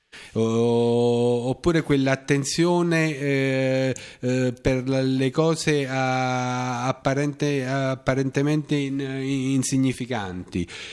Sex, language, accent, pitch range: male, Italian, native, 120-145 Hz